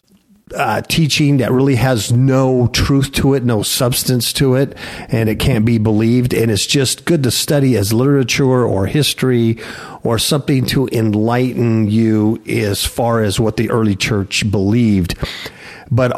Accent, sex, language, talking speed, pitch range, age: American, male, English, 155 wpm, 115-145 Hz, 50-69